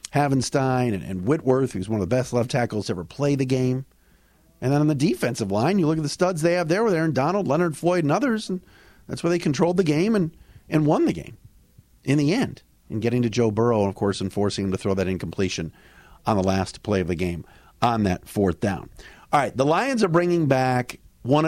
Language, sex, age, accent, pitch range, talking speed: English, male, 50-69, American, 105-165 Hz, 235 wpm